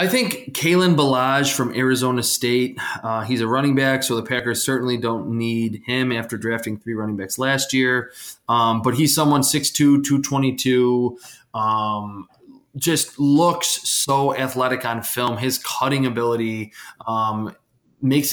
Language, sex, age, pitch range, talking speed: English, male, 20-39, 115-140 Hz, 145 wpm